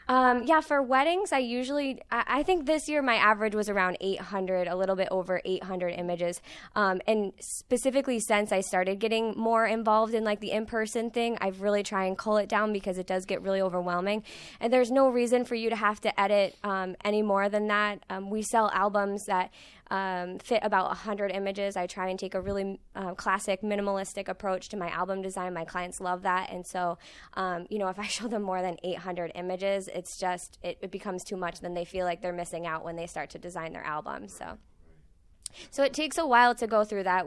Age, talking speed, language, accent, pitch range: 20-39, 220 wpm, English, American, 185-215 Hz